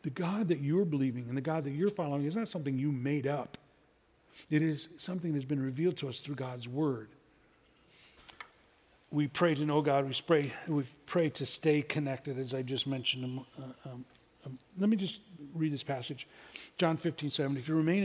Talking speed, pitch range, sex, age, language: 195 wpm, 140-175 Hz, male, 40-59, English